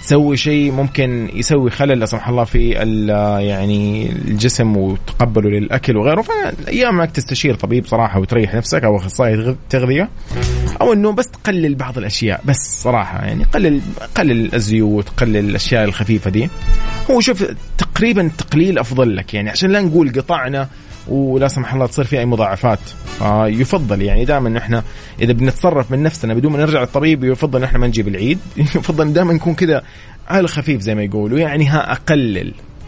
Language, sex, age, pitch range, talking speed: Arabic, male, 30-49, 105-145 Hz, 160 wpm